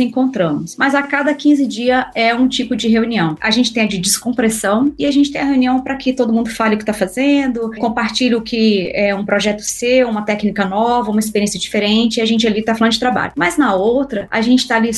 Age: 20-39